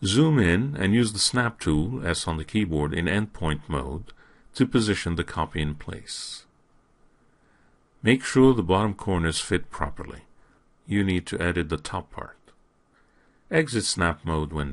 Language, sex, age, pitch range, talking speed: English, male, 50-69, 80-115 Hz, 155 wpm